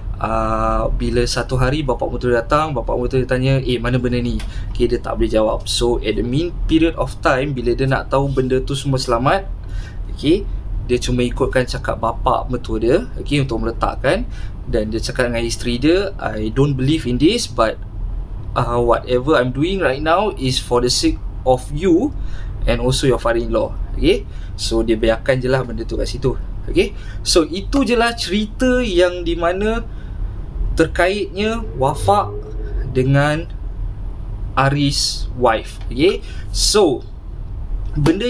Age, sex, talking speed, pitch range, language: 20-39, male, 155 wpm, 110-145 Hz, Malay